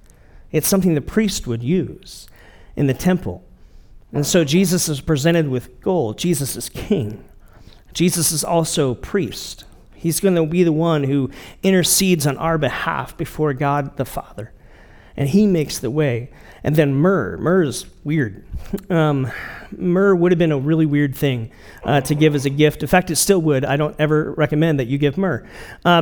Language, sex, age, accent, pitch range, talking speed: English, male, 40-59, American, 135-180 Hz, 180 wpm